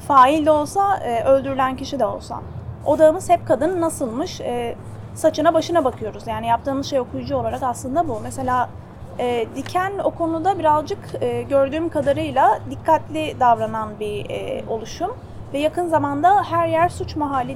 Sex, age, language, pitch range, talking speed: female, 30-49, Turkish, 250-315 Hz, 130 wpm